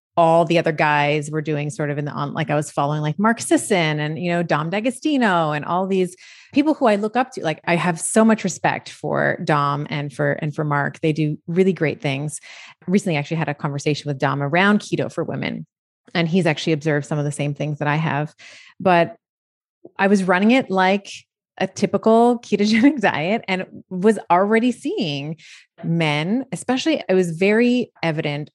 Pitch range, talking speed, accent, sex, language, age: 160-235 Hz, 195 wpm, American, female, English, 30-49